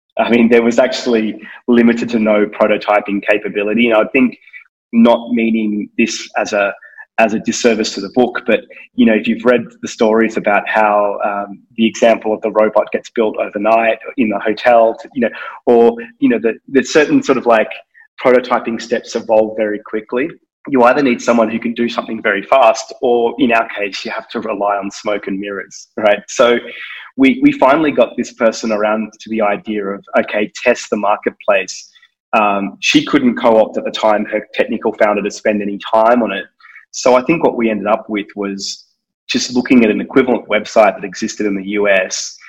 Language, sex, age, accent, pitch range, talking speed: English, male, 20-39, Australian, 105-120 Hz, 195 wpm